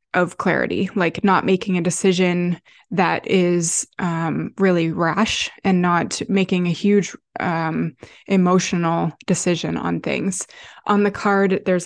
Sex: female